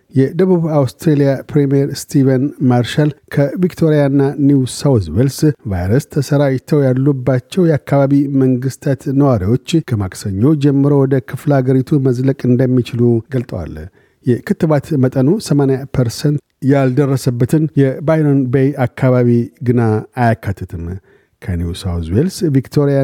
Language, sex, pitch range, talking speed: Amharic, male, 125-140 Hz, 90 wpm